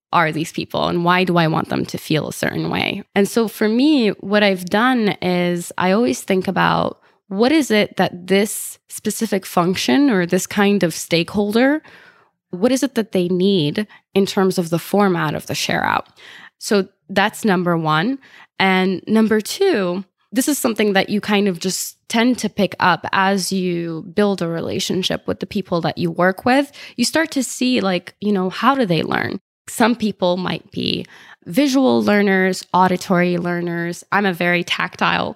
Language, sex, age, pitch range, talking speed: English, female, 10-29, 180-225 Hz, 180 wpm